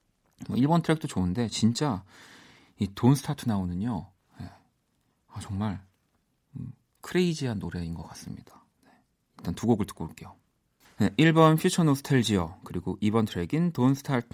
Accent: native